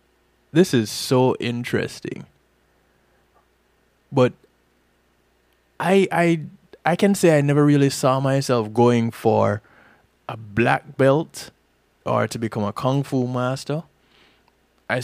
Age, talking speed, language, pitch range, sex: 20-39, 110 wpm, English, 105-135 Hz, male